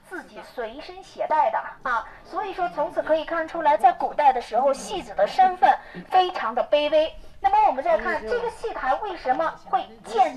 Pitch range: 255-365 Hz